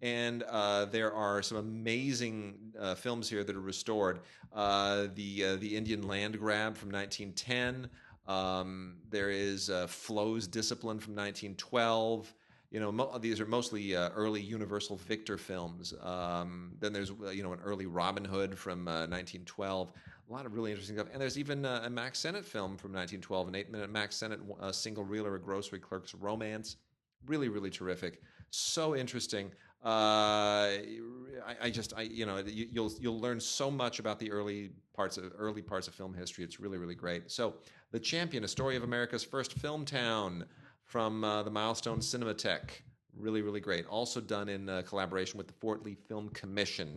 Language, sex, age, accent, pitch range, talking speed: English, male, 40-59, American, 95-115 Hz, 180 wpm